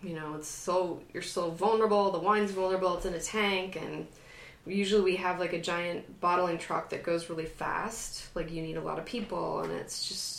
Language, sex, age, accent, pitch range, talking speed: English, female, 20-39, American, 165-200 Hz, 215 wpm